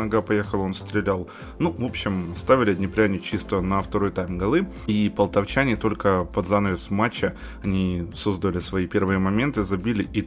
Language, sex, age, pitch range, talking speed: Ukrainian, male, 20-39, 95-110 Hz, 150 wpm